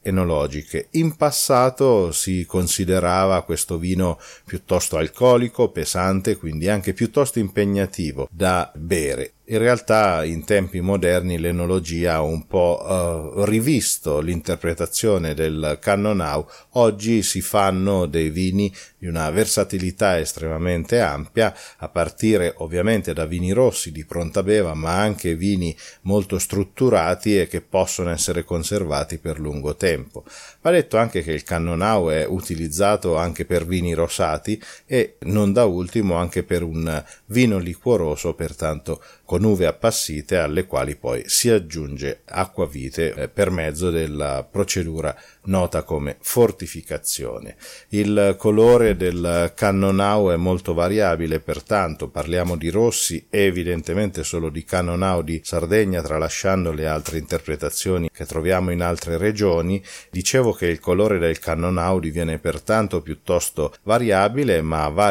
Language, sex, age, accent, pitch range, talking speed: Italian, male, 40-59, native, 80-100 Hz, 125 wpm